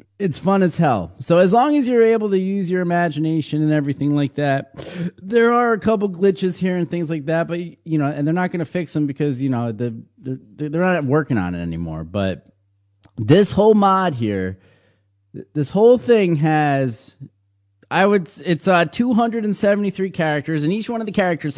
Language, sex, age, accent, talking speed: English, male, 20-39, American, 190 wpm